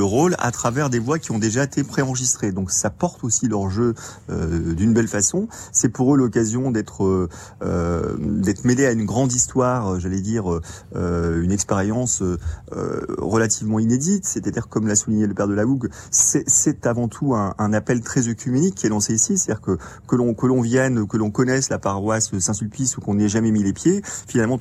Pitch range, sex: 100-130 Hz, male